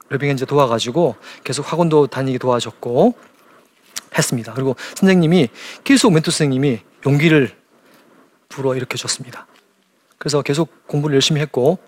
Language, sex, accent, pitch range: Korean, male, native, 135-180 Hz